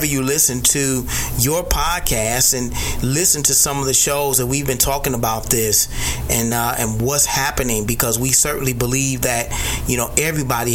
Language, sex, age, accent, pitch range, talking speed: English, male, 30-49, American, 115-135 Hz, 175 wpm